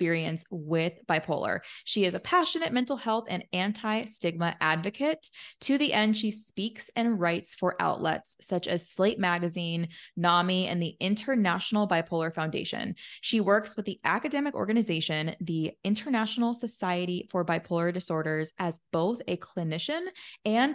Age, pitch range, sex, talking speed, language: 20-39, 175-235 Hz, female, 140 wpm, English